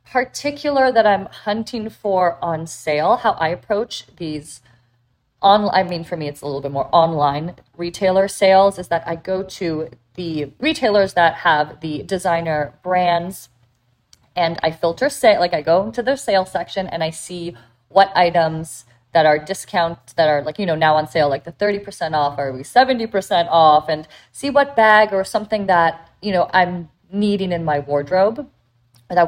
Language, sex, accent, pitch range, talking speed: English, female, American, 150-190 Hz, 175 wpm